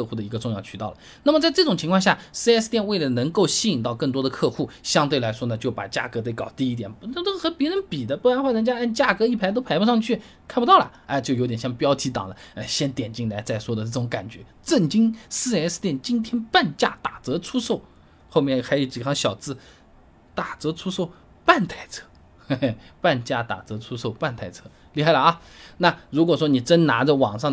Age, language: 20-39, Chinese